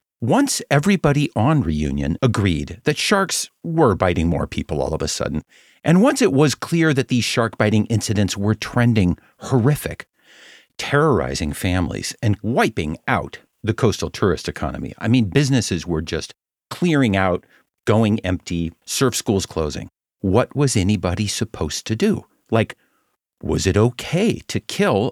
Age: 50-69